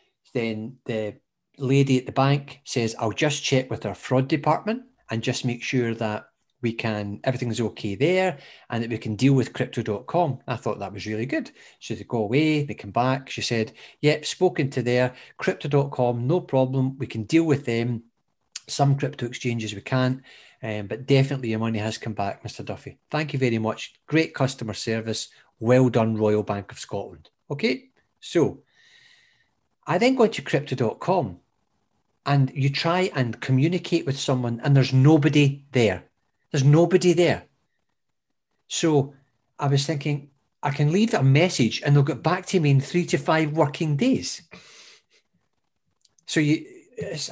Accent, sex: British, male